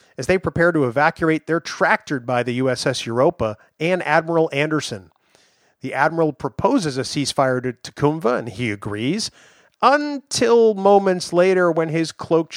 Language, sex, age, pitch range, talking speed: English, male, 40-59, 130-170 Hz, 145 wpm